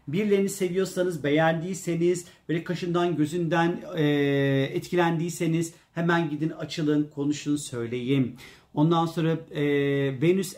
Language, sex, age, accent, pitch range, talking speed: Turkish, male, 40-59, native, 140-170 Hz, 95 wpm